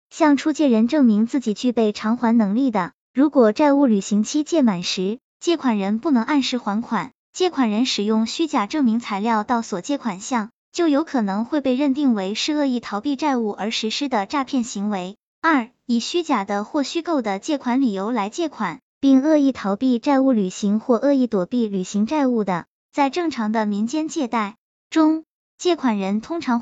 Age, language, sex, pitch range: 20-39, Chinese, male, 215-290 Hz